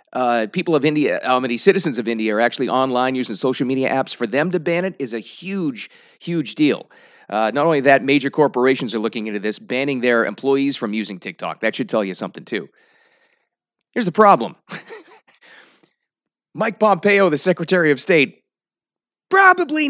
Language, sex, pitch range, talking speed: English, male, 120-180 Hz, 180 wpm